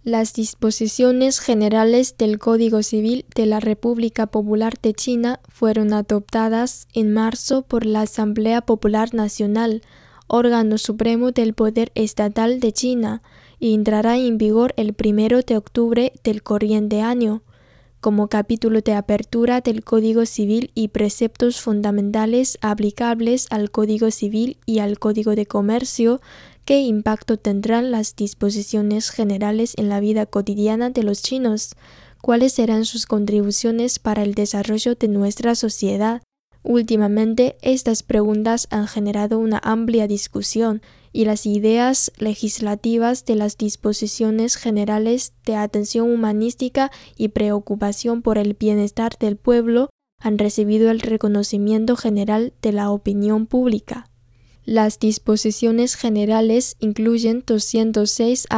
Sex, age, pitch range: female, 10-29, 215-235 Hz